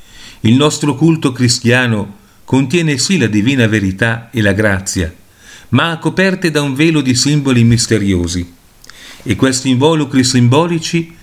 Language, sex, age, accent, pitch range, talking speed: Italian, male, 40-59, native, 110-150 Hz, 130 wpm